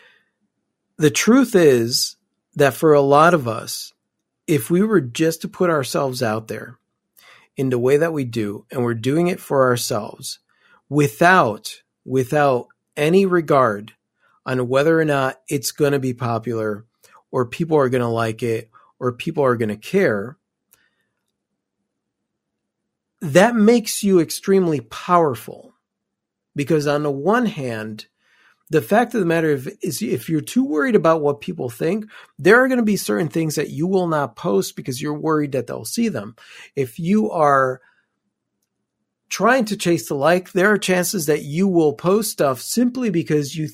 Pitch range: 135-190 Hz